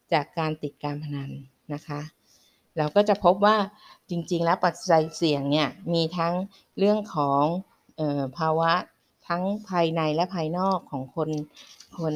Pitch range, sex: 155-195 Hz, female